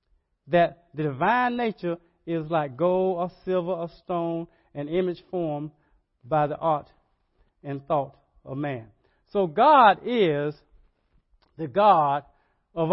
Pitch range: 150-195 Hz